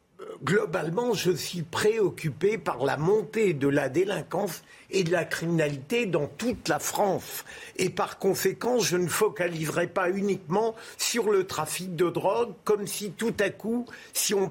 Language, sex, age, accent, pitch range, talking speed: French, male, 50-69, French, 170-215 Hz, 155 wpm